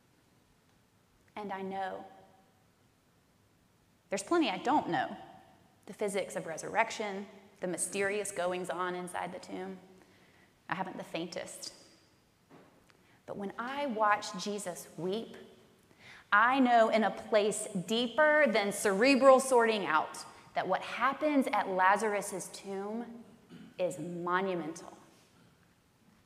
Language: English